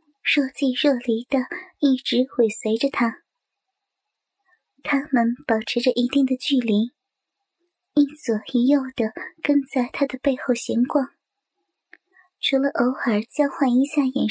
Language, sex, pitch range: Chinese, male, 250-310 Hz